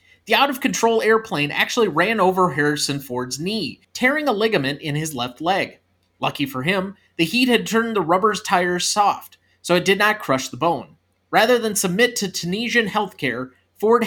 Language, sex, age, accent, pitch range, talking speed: English, male, 30-49, American, 140-210 Hz, 175 wpm